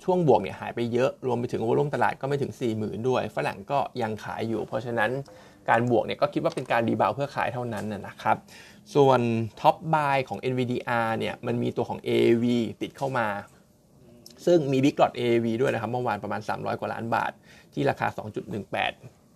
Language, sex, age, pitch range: Thai, male, 20-39, 110-135 Hz